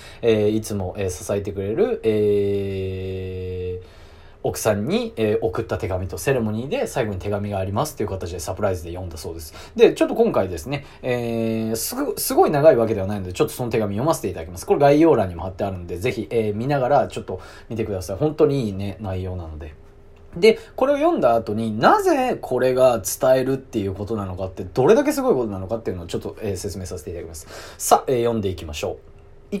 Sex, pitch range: male, 95-120 Hz